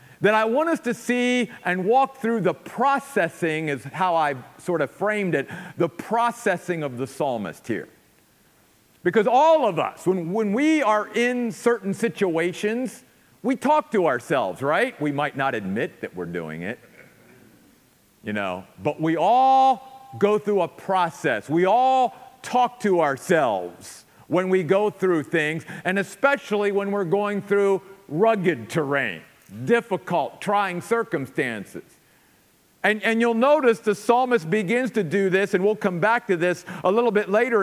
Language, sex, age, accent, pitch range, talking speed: English, male, 50-69, American, 180-235 Hz, 155 wpm